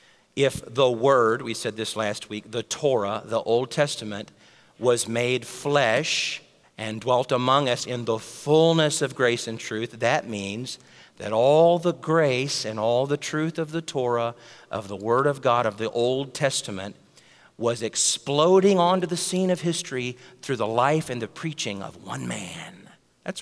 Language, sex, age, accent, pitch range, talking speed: English, male, 50-69, American, 115-165 Hz, 170 wpm